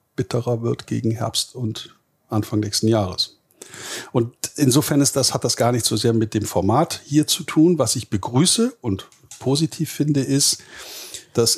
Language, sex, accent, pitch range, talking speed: German, male, German, 100-125 Hz, 160 wpm